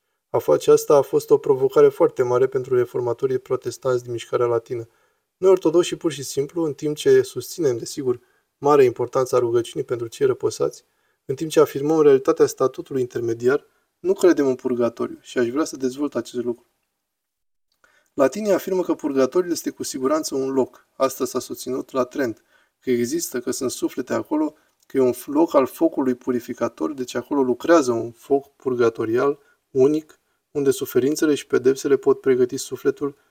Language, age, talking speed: Romanian, 20-39, 165 wpm